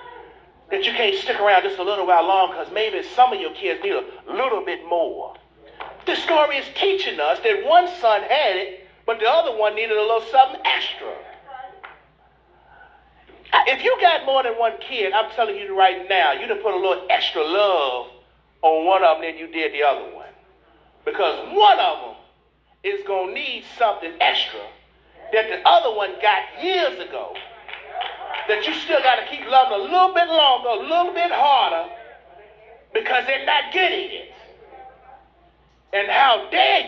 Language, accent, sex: English, American, male